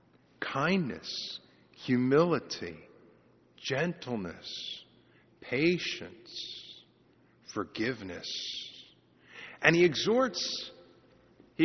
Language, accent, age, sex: English, American, 50-69, male